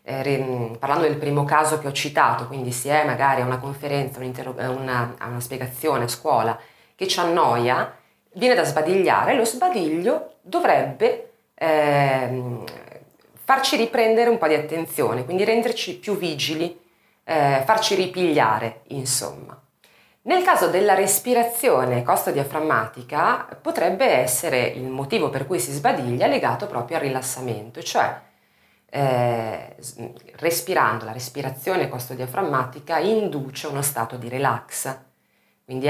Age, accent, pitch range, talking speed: 30-49, native, 125-175 Hz, 130 wpm